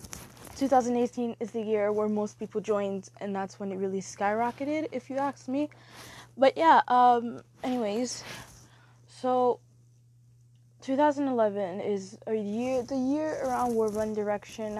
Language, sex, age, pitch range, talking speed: English, female, 10-29, 190-245 Hz, 135 wpm